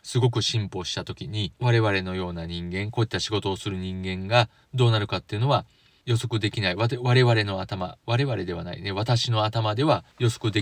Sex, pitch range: male, 100-130 Hz